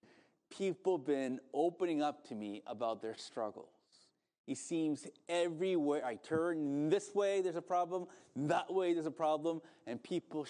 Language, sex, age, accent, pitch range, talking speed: English, male, 30-49, American, 130-190 Hz, 155 wpm